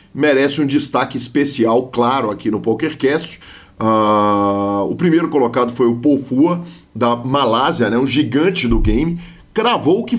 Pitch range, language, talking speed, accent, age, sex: 125-180 Hz, Portuguese, 140 wpm, Brazilian, 40-59, male